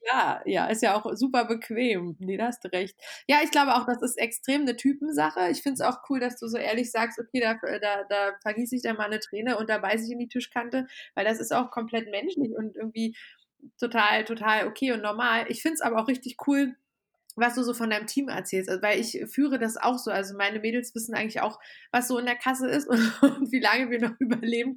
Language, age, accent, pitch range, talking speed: German, 20-39, German, 215-260 Hz, 240 wpm